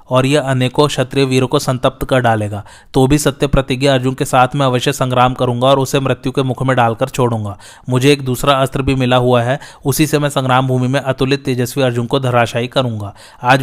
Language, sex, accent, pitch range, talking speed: Hindi, male, native, 125-140 Hz, 215 wpm